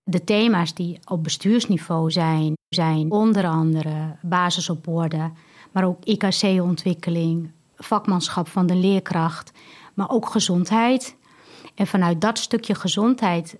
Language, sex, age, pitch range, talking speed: Dutch, female, 30-49, 175-220 Hz, 120 wpm